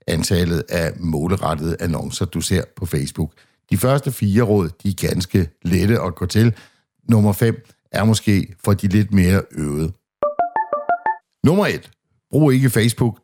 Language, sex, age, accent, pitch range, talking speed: Danish, male, 60-79, native, 95-115 Hz, 150 wpm